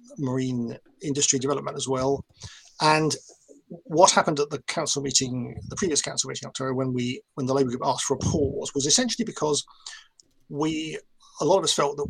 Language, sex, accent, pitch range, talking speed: English, male, British, 125-145 Hz, 185 wpm